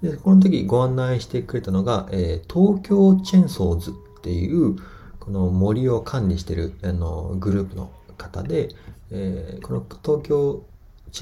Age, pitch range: 40-59, 90-125 Hz